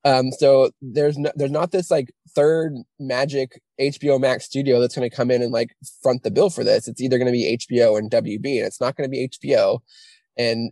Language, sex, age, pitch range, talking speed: English, male, 20-39, 125-150 Hz, 230 wpm